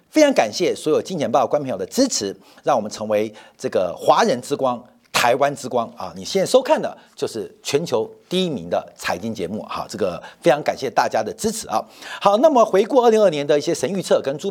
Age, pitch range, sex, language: 50-69, 155-260 Hz, male, Chinese